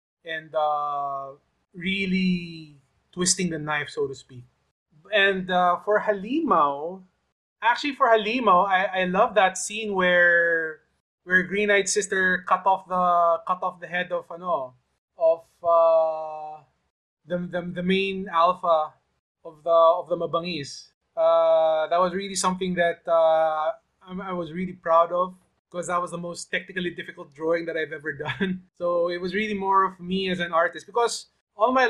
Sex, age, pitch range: male, 20-39, 155-190 Hz